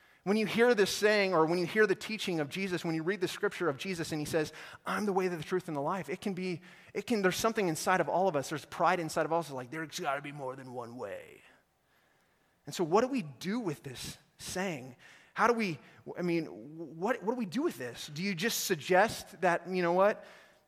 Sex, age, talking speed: male, 30-49, 260 wpm